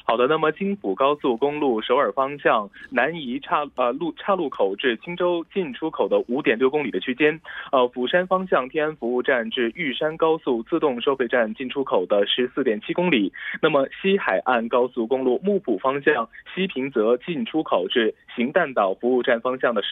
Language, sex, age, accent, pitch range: Korean, male, 20-39, Chinese, 130-185 Hz